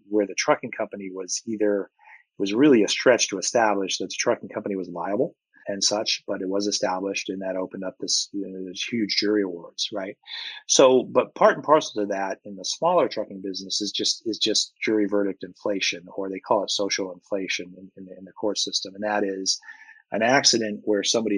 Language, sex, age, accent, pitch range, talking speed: English, male, 30-49, American, 95-105 Hz, 210 wpm